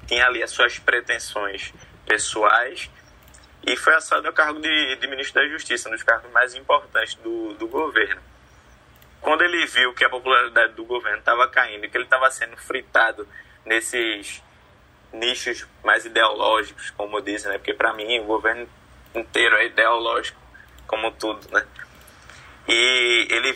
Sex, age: male, 20-39